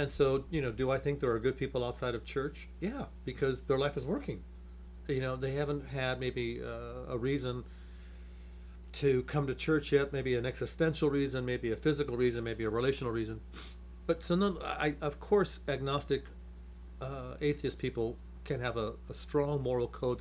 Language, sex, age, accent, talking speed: English, male, 40-59, American, 180 wpm